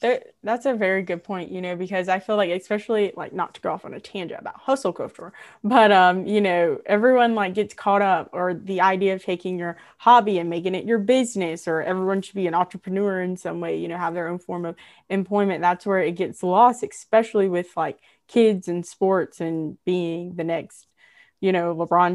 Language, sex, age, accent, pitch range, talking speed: English, female, 20-39, American, 175-205 Hz, 215 wpm